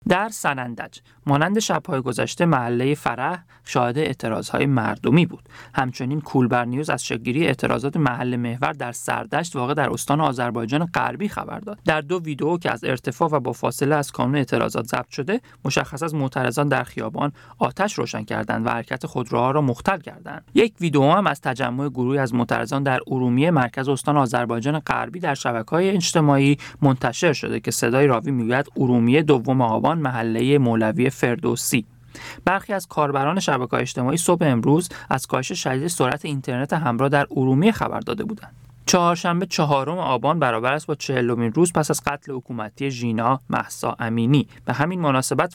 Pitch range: 120-155 Hz